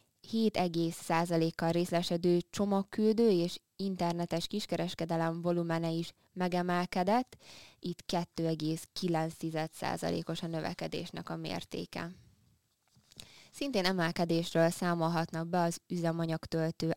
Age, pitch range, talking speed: 20-39, 160-175 Hz, 75 wpm